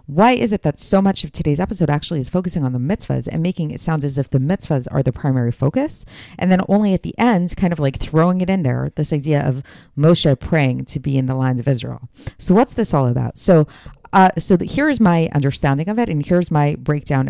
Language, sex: English, female